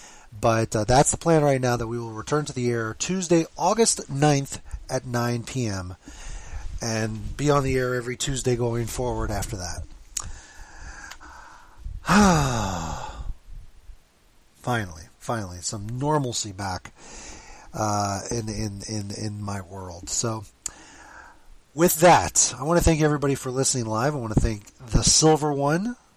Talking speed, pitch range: 140 wpm, 110-145 Hz